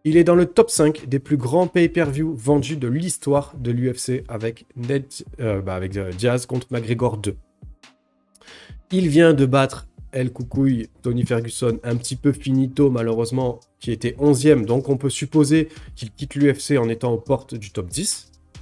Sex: male